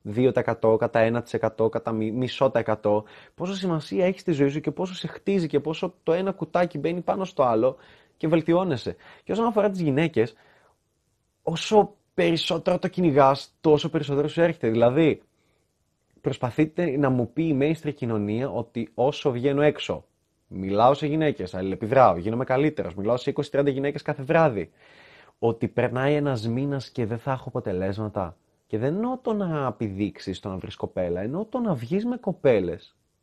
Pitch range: 115-180 Hz